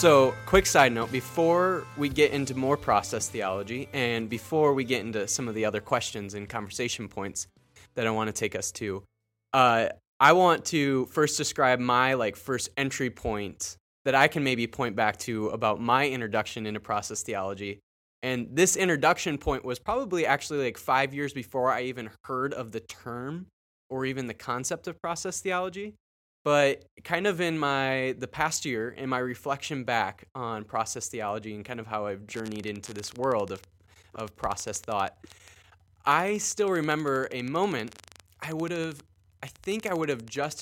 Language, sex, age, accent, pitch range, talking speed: English, male, 20-39, American, 105-145 Hz, 180 wpm